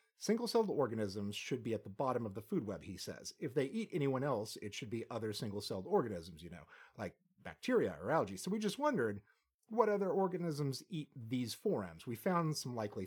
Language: English